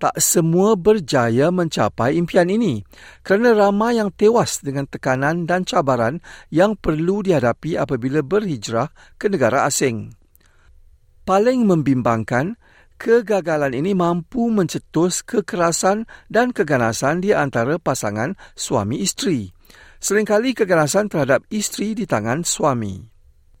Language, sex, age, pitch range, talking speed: Malay, male, 50-69, 115-185 Hz, 105 wpm